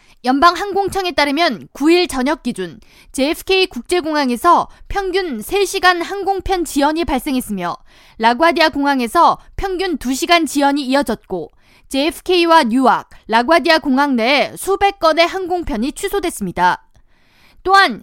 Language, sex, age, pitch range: Korean, female, 20-39, 265-360 Hz